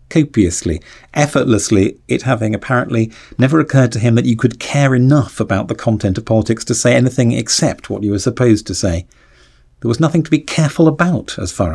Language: English